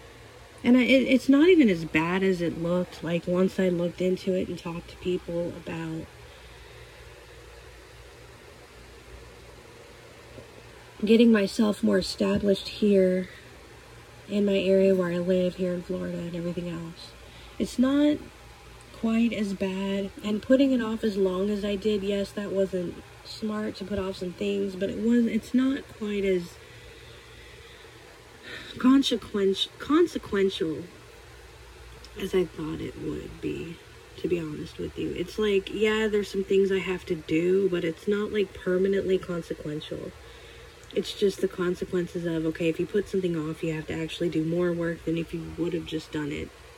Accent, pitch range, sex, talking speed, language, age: American, 175-210 Hz, female, 160 wpm, English, 30-49